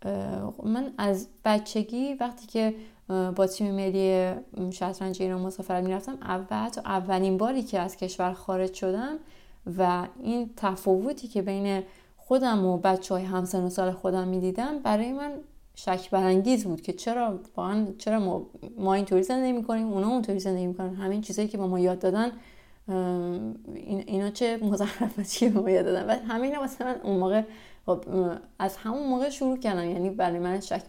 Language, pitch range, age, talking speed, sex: Persian, 185-225 Hz, 20-39, 165 wpm, female